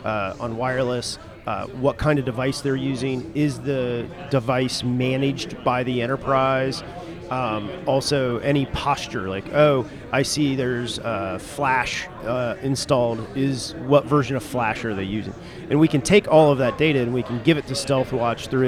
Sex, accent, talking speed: male, American, 175 wpm